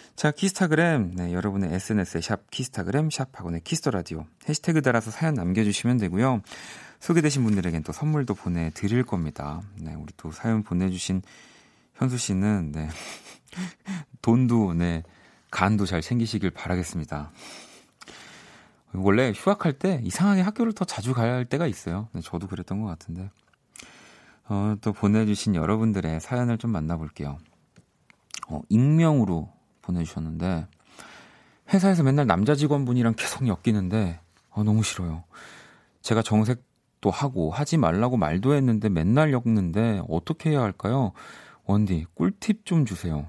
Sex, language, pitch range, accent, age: male, Korean, 85-130 Hz, native, 30-49